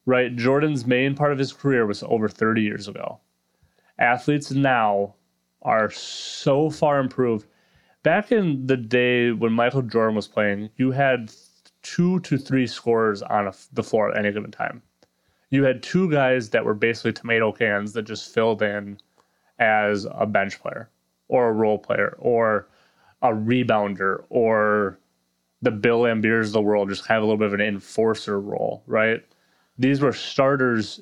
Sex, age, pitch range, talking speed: male, 20-39, 105-130 Hz, 170 wpm